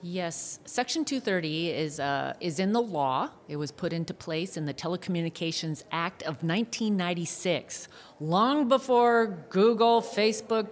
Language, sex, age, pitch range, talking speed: English, female, 40-59, 165-225 Hz, 160 wpm